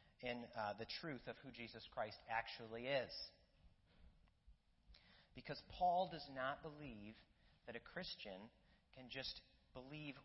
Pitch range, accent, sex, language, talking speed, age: 120-175 Hz, American, male, English, 125 wpm, 30-49